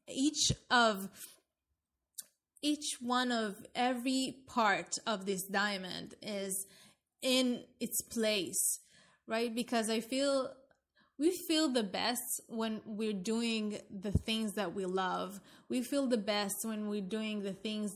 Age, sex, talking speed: 20-39, female, 130 wpm